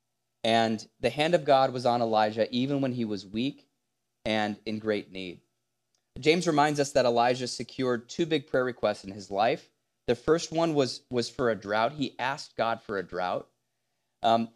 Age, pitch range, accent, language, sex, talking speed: 30-49, 110-145 Hz, American, English, male, 185 wpm